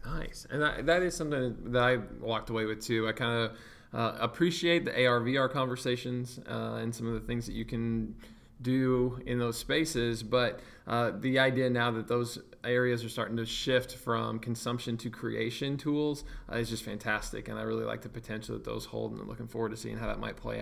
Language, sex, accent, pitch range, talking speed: English, male, American, 115-140 Hz, 210 wpm